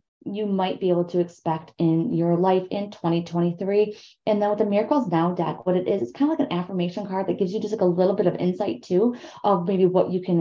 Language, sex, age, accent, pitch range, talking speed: English, female, 20-39, American, 170-215 Hz, 255 wpm